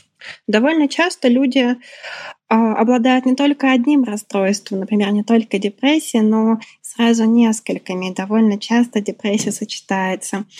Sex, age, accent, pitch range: female, 20-39, native, 205-250 Hz